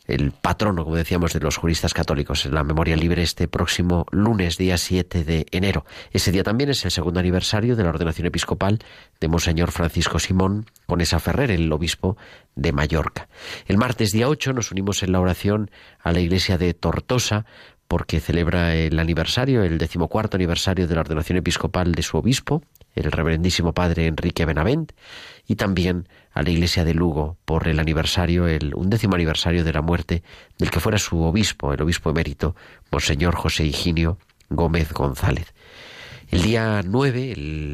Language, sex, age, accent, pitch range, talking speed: Spanish, male, 40-59, Spanish, 85-100 Hz, 170 wpm